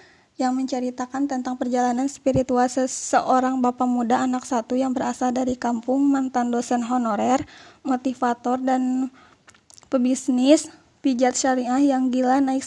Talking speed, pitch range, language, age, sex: 120 wpm, 255-275 Hz, Indonesian, 20-39, female